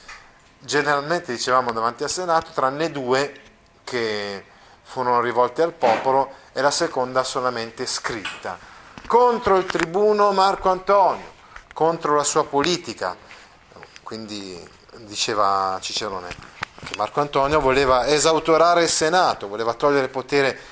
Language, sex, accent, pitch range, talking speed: Italian, male, native, 115-150 Hz, 115 wpm